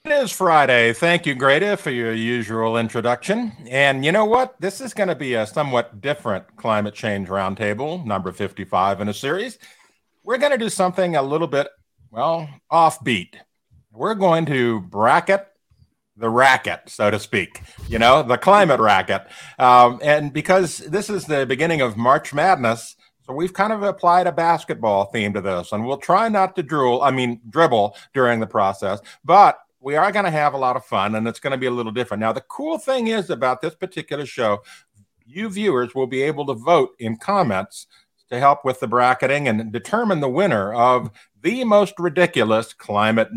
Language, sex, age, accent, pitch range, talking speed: English, male, 50-69, American, 115-175 Hz, 190 wpm